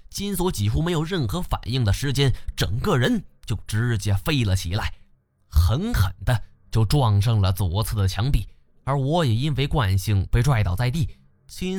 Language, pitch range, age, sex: Chinese, 100-135 Hz, 20-39, male